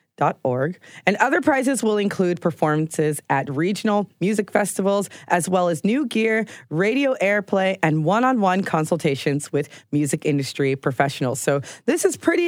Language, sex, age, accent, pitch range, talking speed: English, female, 30-49, American, 155-215 Hz, 135 wpm